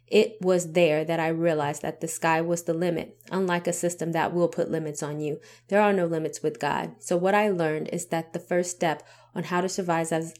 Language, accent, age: English, American, 20-39